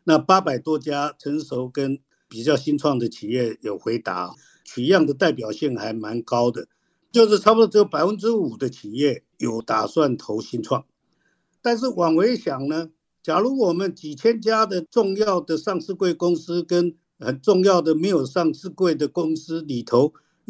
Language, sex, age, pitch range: Chinese, male, 50-69, 145-195 Hz